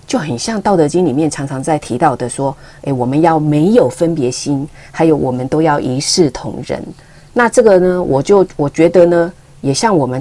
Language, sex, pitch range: Chinese, female, 140-175 Hz